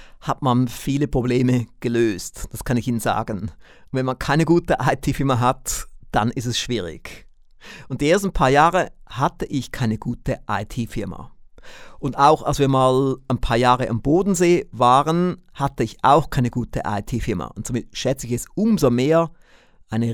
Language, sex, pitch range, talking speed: German, male, 110-140 Hz, 165 wpm